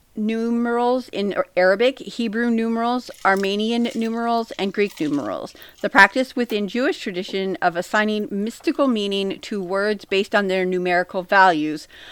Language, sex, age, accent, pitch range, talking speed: English, female, 40-59, American, 185-235 Hz, 130 wpm